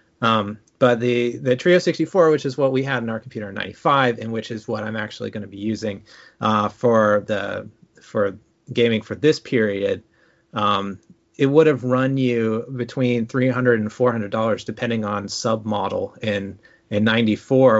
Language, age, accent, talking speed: English, 30-49, American, 170 wpm